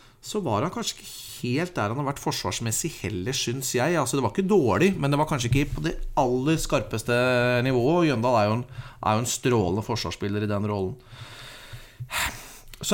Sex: male